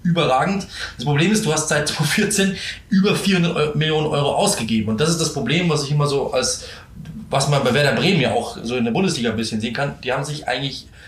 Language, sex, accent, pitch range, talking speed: German, male, German, 120-155 Hz, 225 wpm